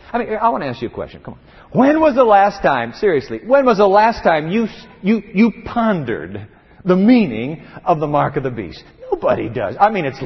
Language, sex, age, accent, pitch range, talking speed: English, male, 50-69, American, 145-235 Hz, 230 wpm